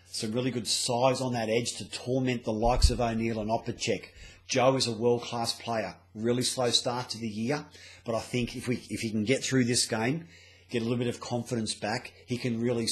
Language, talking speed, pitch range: English, 230 wpm, 110-125 Hz